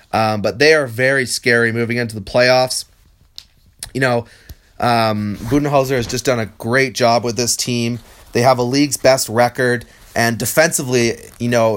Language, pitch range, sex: English, 115-135 Hz, male